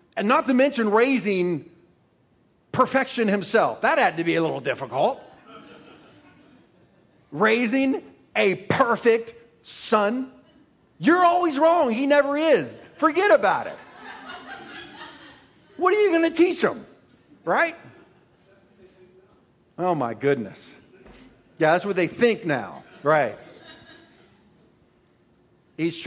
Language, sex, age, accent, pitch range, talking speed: English, male, 50-69, American, 135-205 Hz, 105 wpm